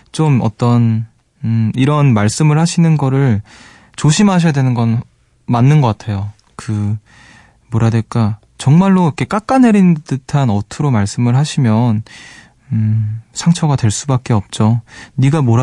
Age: 20-39